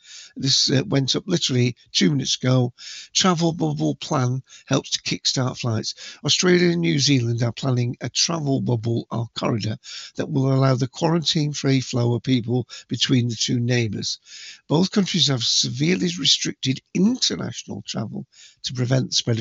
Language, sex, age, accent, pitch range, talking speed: English, male, 50-69, British, 120-150 Hz, 155 wpm